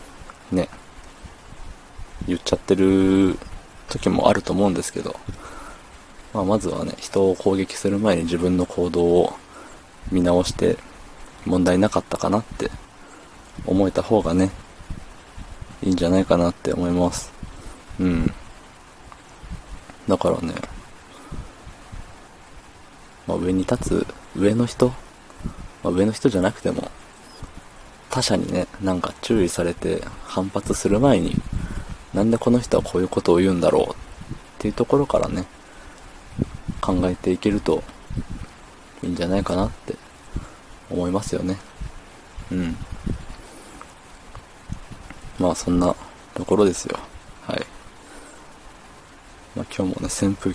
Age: 20-39